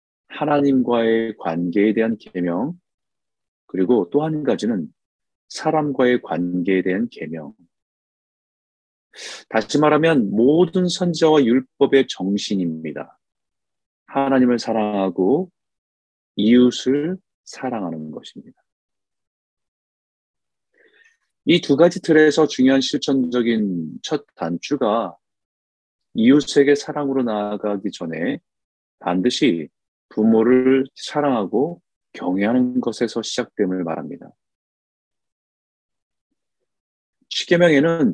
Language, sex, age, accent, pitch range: Korean, male, 40-59, native, 90-135 Hz